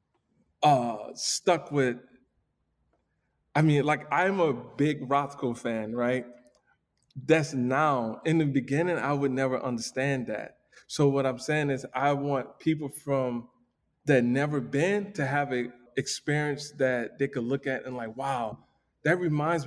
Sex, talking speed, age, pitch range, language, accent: male, 145 wpm, 20-39, 120-140 Hz, English, American